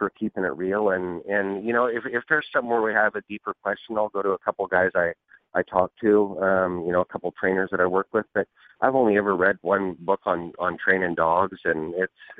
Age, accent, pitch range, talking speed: 40-59, American, 90-105 Hz, 245 wpm